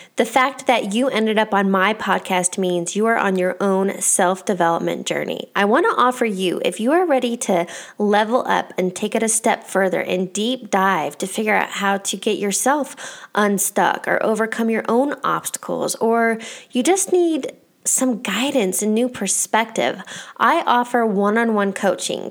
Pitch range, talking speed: 195-255 Hz, 170 wpm